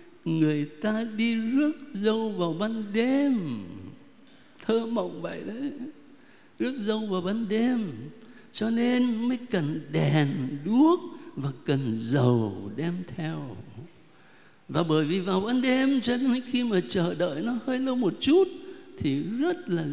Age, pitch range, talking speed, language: 60-79, 155-260 Hz, 145 wpm, Vietnamese